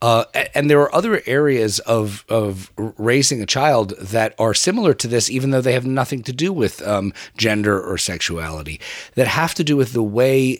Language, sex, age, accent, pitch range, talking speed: English, male, 40-59, American, 95-125 Hz, 200 wpm